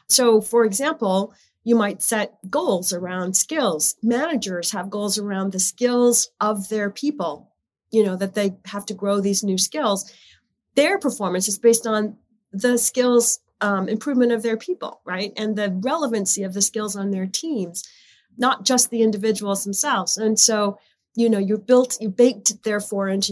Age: 40-59